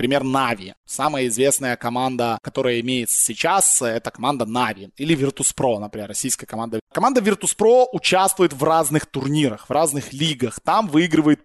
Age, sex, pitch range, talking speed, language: 20-39, male, 130-165 Hz, 140 wpm, Russian